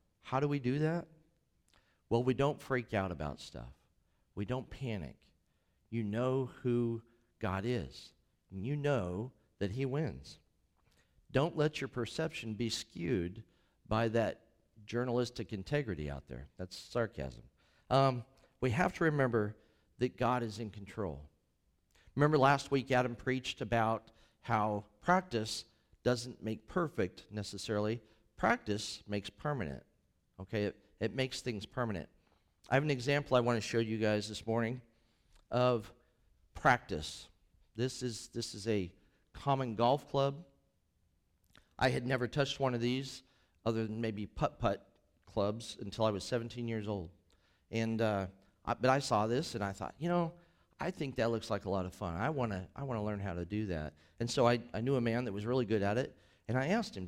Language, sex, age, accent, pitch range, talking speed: English, male, 50-69, American, 95-125 Hz, 165 wpm